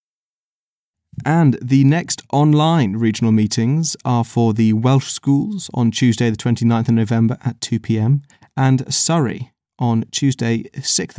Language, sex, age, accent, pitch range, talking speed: English, male, 30-49, British, 115-140 Hz, 135 wpm